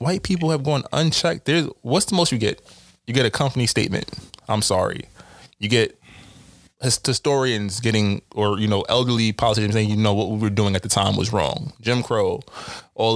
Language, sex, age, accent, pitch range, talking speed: English, male, 20-39, American, 105-140 Hz, 190 wpm